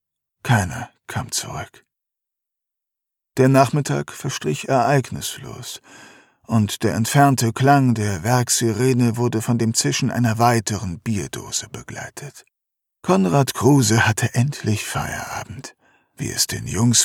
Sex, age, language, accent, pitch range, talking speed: male, 50-69, German, German, 115-140 Hz, 105 wpm